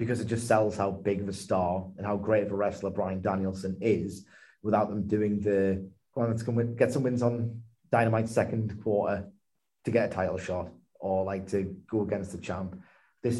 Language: English